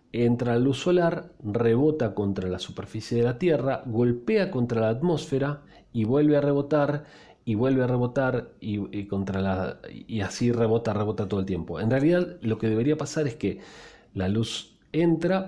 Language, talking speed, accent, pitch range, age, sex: Spanish, 165 wpm, Argentinian, 110-150 Hz, 40-59, male